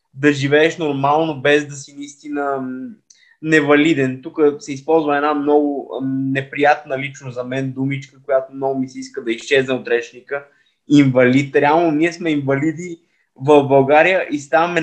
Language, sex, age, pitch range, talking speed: Bulgarian, male, 20-39, 135-165 Hz, 145 wpm